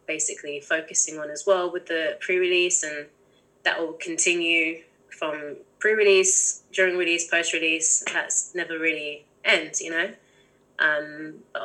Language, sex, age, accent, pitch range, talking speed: English, female, 20-39, British, 150-185 Hz, 130 wpm